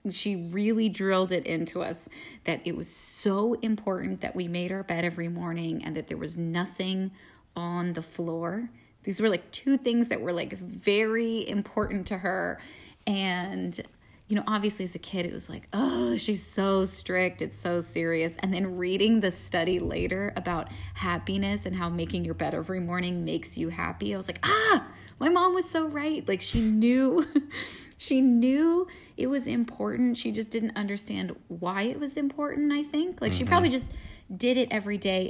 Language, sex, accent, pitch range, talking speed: English, female, American, 180-230 Hz, 185 wpm